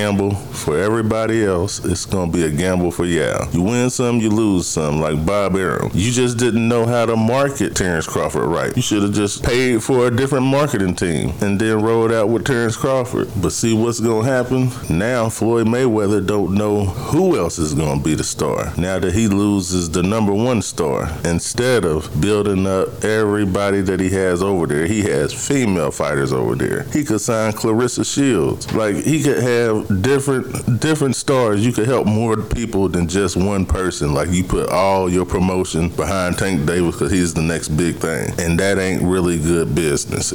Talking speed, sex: 200 wpm, male